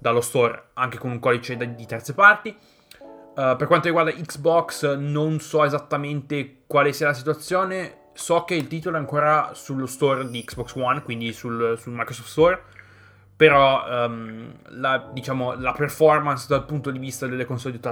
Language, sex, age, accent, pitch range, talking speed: Italian, male, 20-39, native, 120-145 Hz, 160 wpm